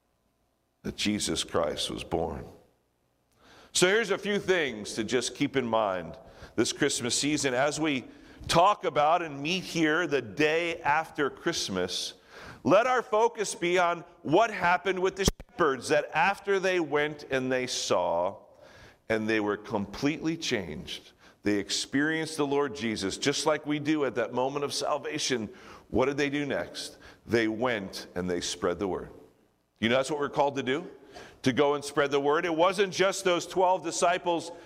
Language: English